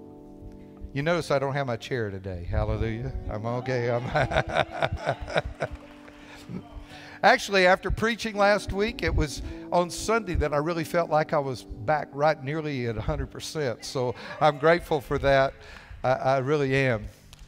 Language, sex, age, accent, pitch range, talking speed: English, male, 50-69, American, 105-150 Hz, 145 wpm